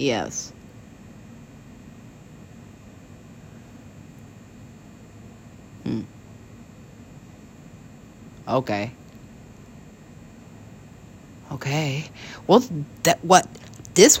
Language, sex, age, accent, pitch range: English, female, 40-59, American, 115-170 Hz